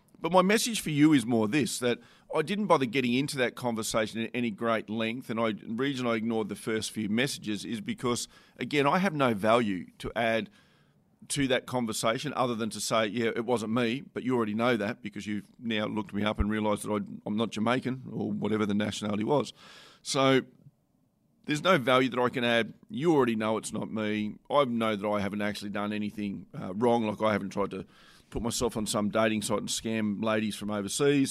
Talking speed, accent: 215 wpm, Australian